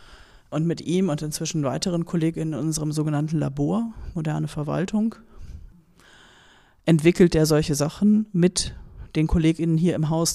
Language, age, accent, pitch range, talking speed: German, 30-49, German, 145-165 Hz, 135 wpm